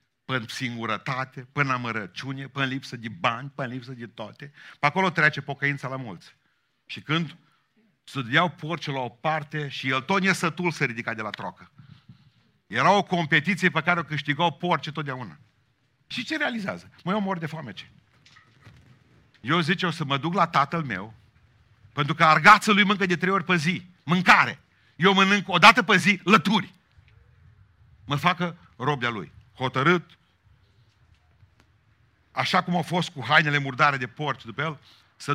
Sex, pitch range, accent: male, 115-165 Hz, native